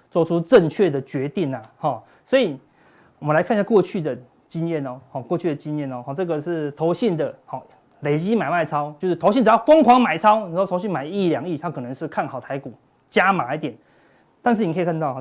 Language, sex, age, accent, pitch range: Chinese, male, 30-49, native, 150-215 Hz